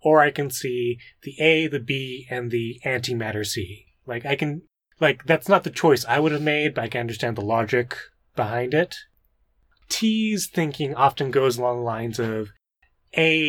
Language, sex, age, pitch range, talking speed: English, male, 20-39, 120-140 Hz, 185 wpm